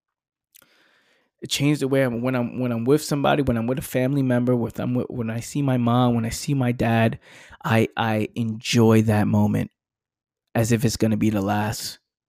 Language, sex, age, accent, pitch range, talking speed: English, male, 20-39, American, 115-130 Hz, 210 wpm